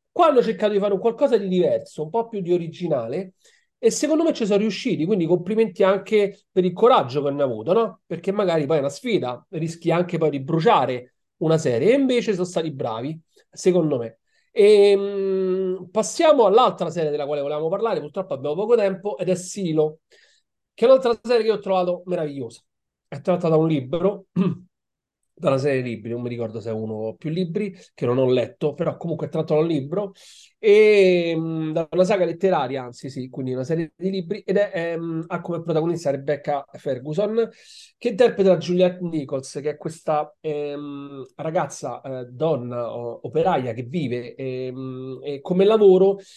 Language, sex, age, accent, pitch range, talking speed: Italian, male, 40-59, native, 145-195 Hz, 180 wpm